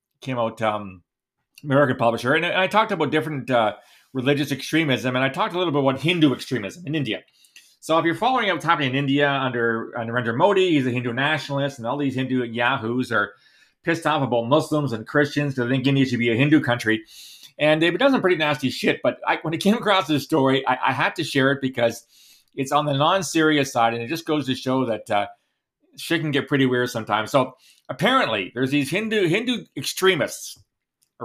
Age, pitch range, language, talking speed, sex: 30-49, 130-170 Hz, English, 215 wpm, male